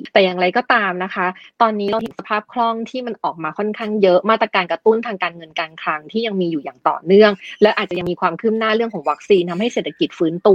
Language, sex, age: Thai, female, 20-39